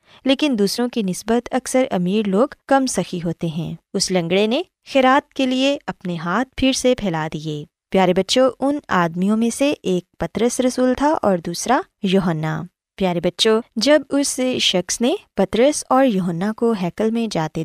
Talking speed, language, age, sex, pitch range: 165 wpm, Urdu, 20-39, female, 180-255 Hz